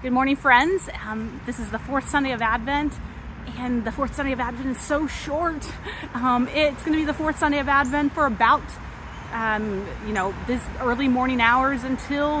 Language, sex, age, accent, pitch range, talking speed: English, female, 30-49, American, 200-265 Hz, 195 wpm